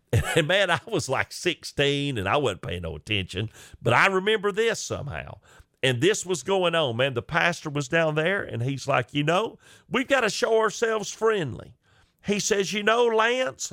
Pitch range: 135-210 Hz